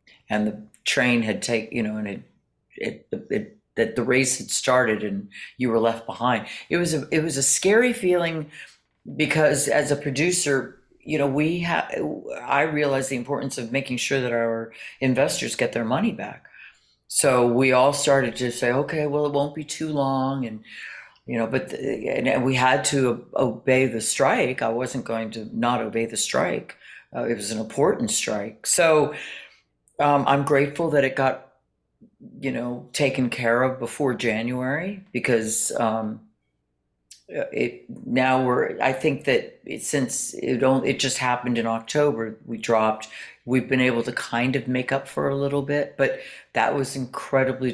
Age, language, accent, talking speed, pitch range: 50-69, English, American, 175 wpm, 115-140 Hz